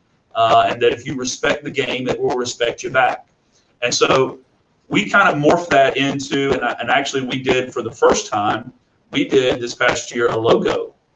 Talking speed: 210 wpm